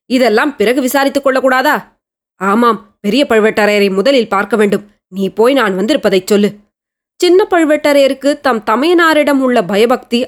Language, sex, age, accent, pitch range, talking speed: Tamil, female, 20-39, native, 220-290 Hz, 125 wpm